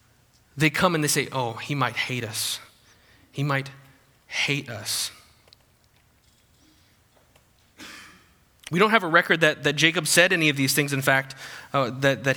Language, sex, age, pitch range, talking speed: English, male, 20-39, 120-185 Hz, 155 wpm